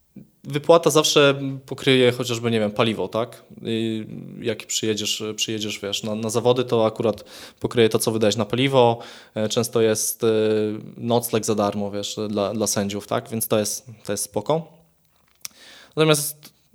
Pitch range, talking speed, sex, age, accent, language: 110-125 Hz, 145 wpm, male, 20-39, native, Polish